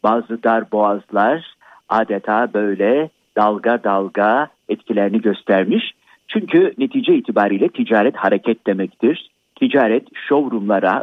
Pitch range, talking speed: 105-140 Hz, 85 wpm